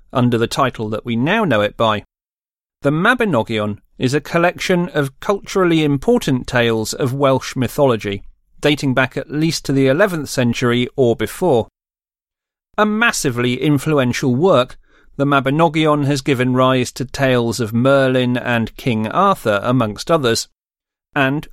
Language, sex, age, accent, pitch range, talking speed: English, male, 40-59, British, 120-170 Hz, 140 wpm